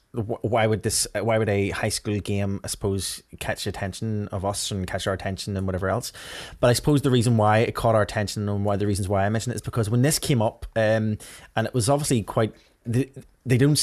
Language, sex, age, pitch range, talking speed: English, male, 20-39, 100-115 Hz, 245 wpm